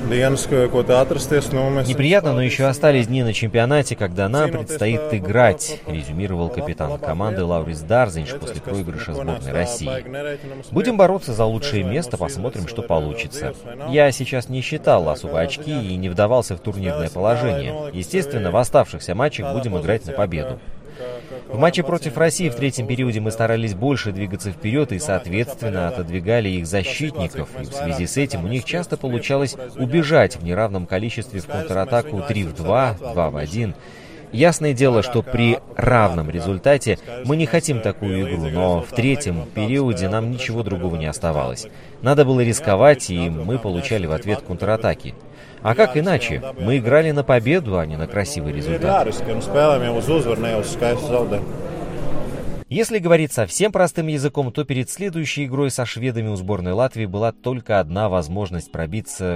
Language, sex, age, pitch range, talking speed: Russian, male, 30-49, 95-140 Hz, 150 wpm